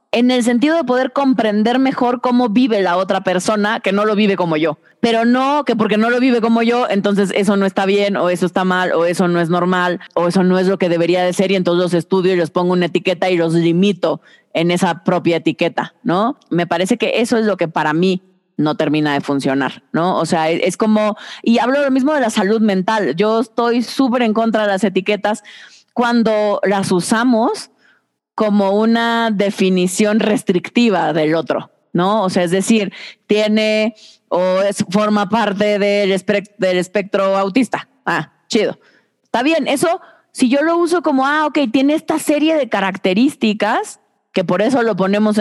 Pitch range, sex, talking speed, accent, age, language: 185-245 Hz, female, 190 wpm, Mexican, 20-39, Spanish